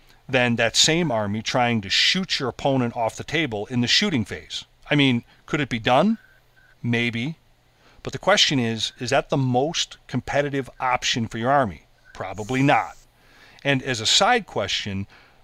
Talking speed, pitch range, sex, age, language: 165 wpm, 105-140 Hz, male, 40-59, English